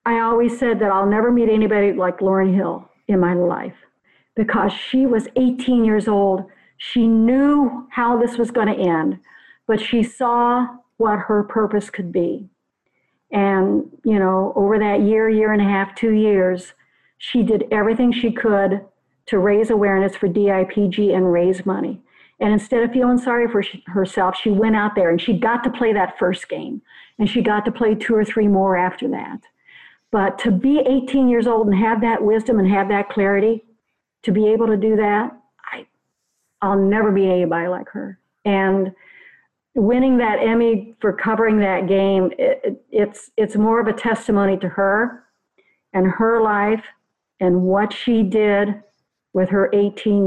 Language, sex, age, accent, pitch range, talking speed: English, female, 50-69, American, 195-230 Hz, 175 wpm